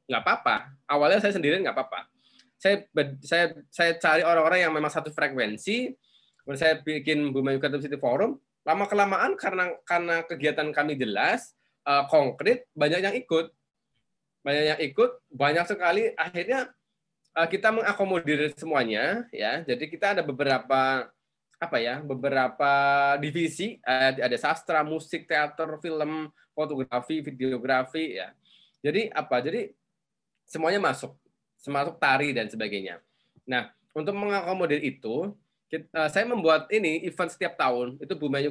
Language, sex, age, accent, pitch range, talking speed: Indonesian, male, 20-39, native, 135-170 Hz, 130 wpm